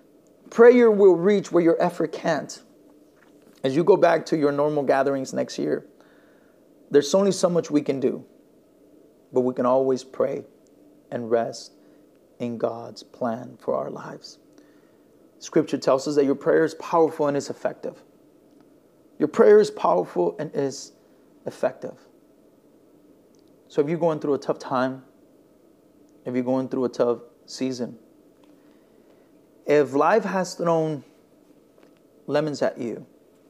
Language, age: English, 30-49